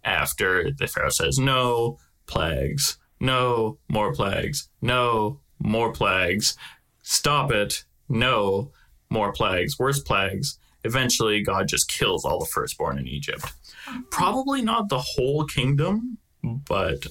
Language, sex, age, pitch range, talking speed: English, male, 20-39, 85-125 Hz, 120 wpm